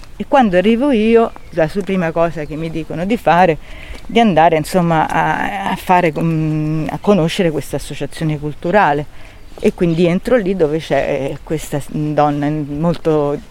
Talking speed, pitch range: 145 wpm, 155-190 Hz